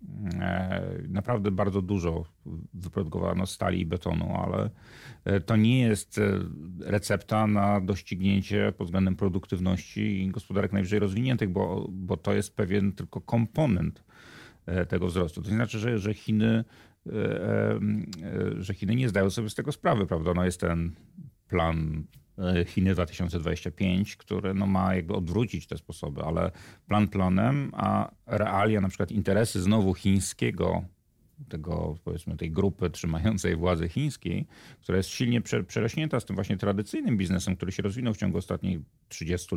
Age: 40-59